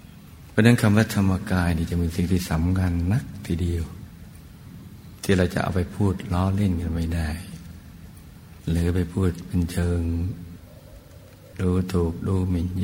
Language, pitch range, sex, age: Thai, 85-95 Hz, male, 60-79